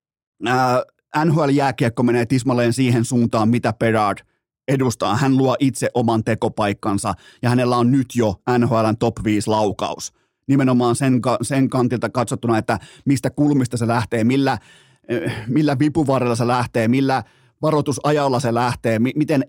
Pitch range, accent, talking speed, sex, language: 120-150 Hz, native, 125 wpm, male, Finnish